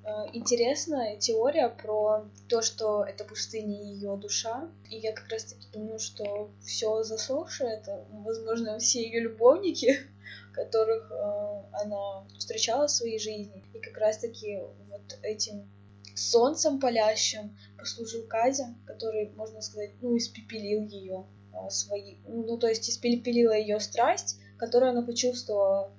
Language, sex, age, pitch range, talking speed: Russian, female, 10-29, 150-230 Hz, 120 wpm